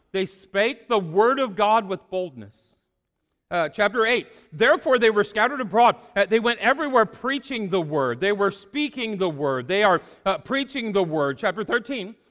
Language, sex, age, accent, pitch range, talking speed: English, male, 40-59, American, 195-260 Hz, 175 wpm